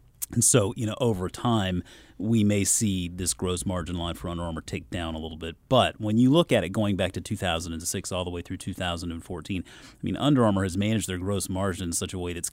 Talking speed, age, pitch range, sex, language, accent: 245 wpm, 30-49, 90-115 Hz, male, English, American